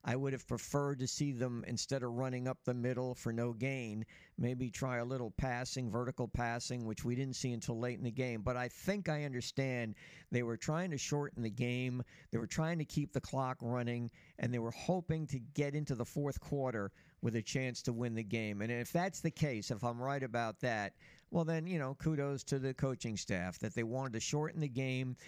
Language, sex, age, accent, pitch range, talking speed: English, male, 50-69, American, 120-140 Hz, 225 wpm